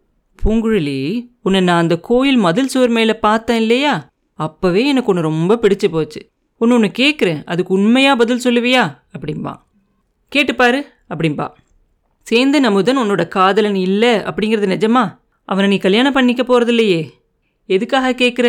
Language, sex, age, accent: Tamil, female, 30-49, native